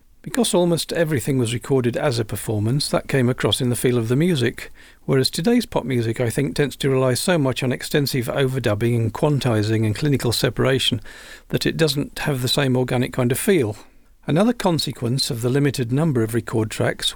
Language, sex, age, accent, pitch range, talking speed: English, male, 50-69, British, 120-145 Hz, 190 wpm